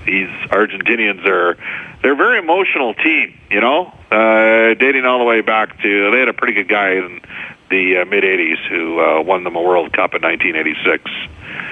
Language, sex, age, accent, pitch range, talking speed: English, male, 50-69, American, 95-125 Hz, 185 wpm